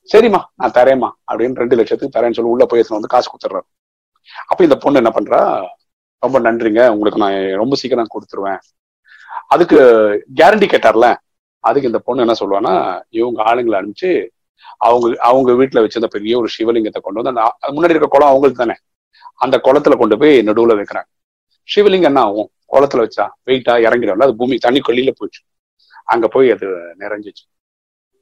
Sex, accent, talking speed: male, native, 155 wpm